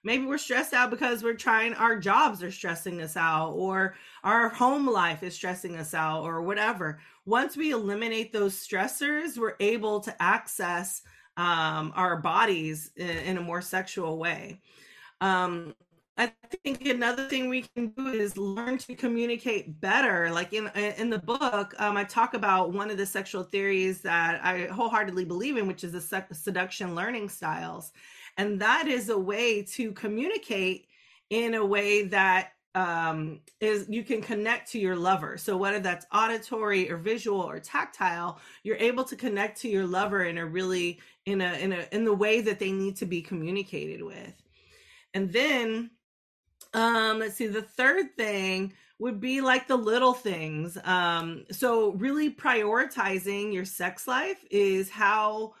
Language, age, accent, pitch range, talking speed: English, 30-49, American, 185-230 Hz, 165 wpm